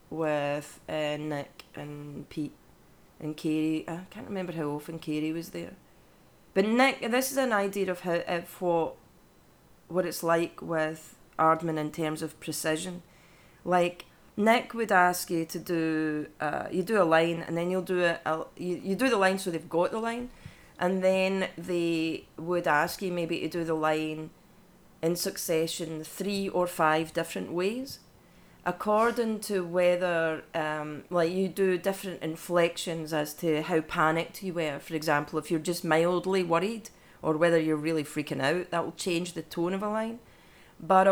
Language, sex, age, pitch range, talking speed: English, female, 30-49, 160-190 Hz, 170 wpm